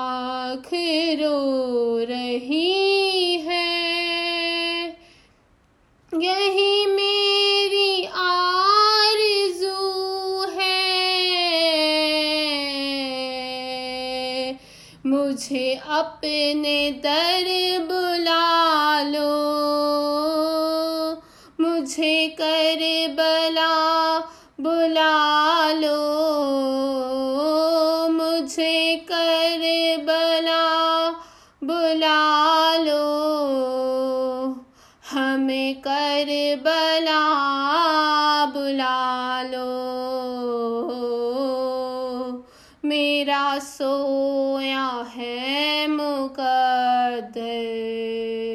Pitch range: 265-330 Hz